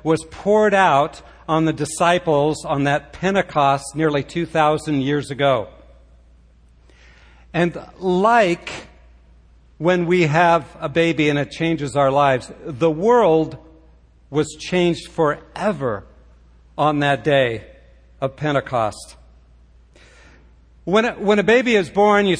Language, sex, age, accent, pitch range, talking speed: English, male, 60-79, American, 135-185 Hz, 115 wpm